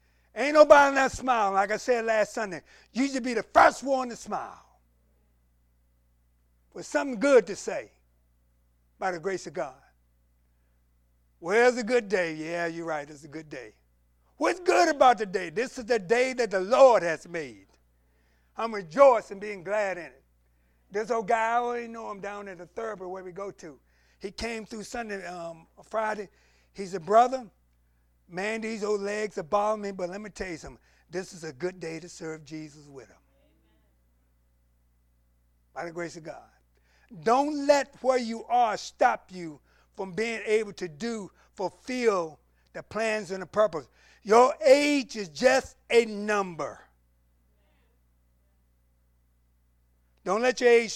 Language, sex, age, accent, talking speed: English, male, 50-69, American, 165 wpm